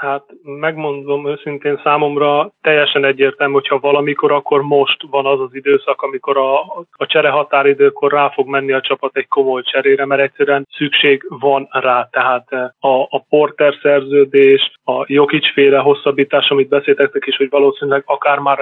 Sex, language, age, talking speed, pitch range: male, Hungarian, 20-39, 150 wpm, 140-150 Hz